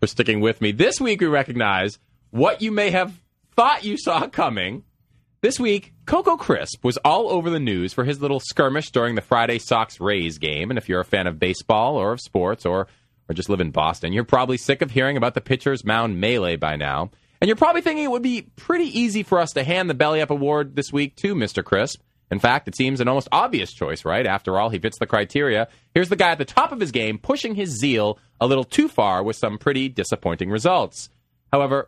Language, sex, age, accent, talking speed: English, male, 30-49, American, 230 wpm